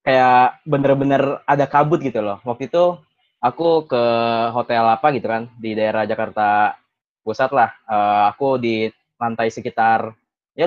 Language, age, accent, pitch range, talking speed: Indonesian, 20-39, native, 115-145 Hz, 140 wpm